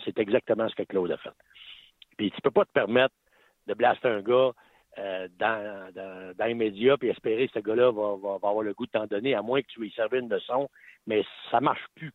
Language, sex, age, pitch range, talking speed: French, male, 60-79, 115-155 Hz, 250 wpm